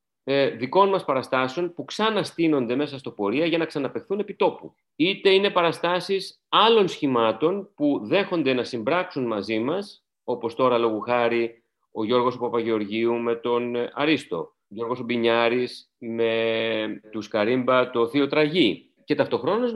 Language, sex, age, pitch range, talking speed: Greek, male, 30-49, 110-180 Hz, 130 wpm